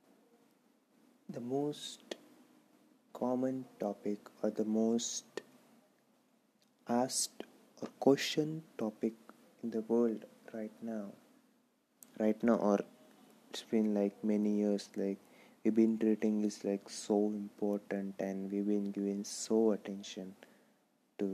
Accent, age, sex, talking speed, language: native, 20-39, male, 110 wpm, Marathi